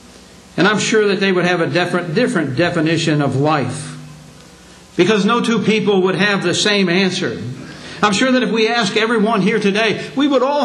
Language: English